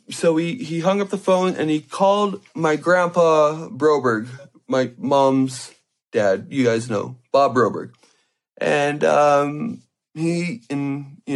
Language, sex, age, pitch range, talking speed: English, male, 20-39, 130-165 Hz, 135 wpm